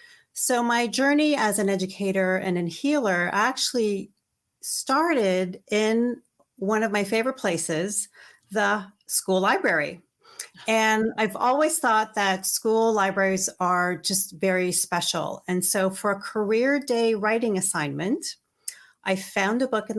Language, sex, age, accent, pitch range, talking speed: English, female, 40-59, American, 185-230 Hz, 130 wpm